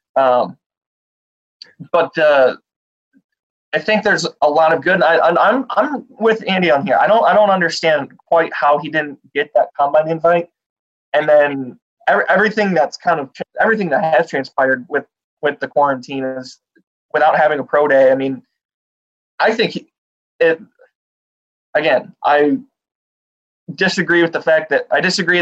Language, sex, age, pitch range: English, male, 20-39, 135-170 Hz